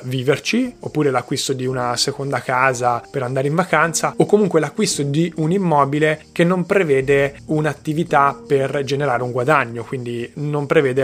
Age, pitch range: 20-39, 135-160 Hz